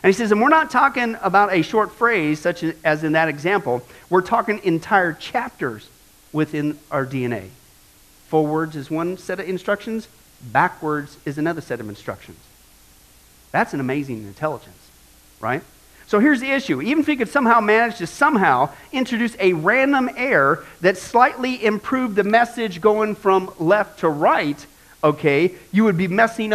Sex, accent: male, American